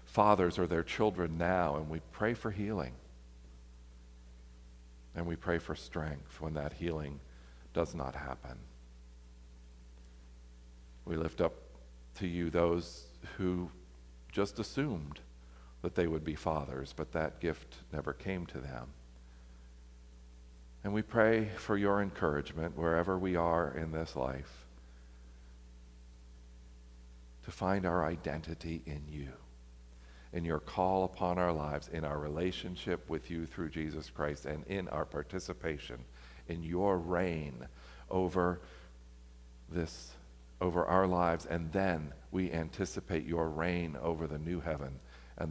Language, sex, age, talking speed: English, male, 50-69, 130 wpm